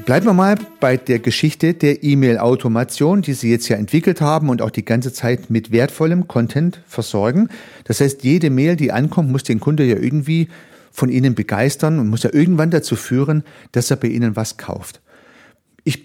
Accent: German